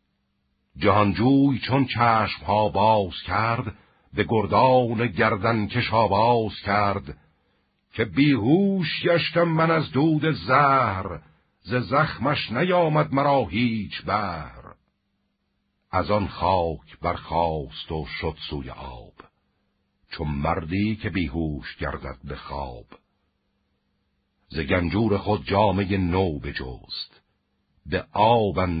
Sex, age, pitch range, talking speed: male, 60-79, 80-105 Hz, 100 wpm